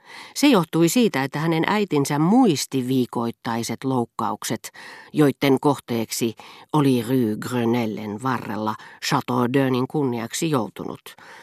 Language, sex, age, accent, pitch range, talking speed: Finnish, female, 40-59, native, 120-155 Hz, 100 wpm